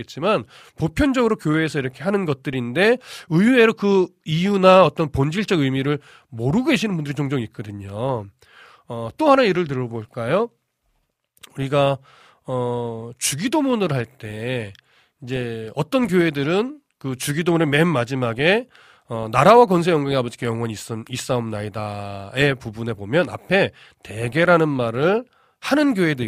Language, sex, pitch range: Korean, male, 120-185 Hz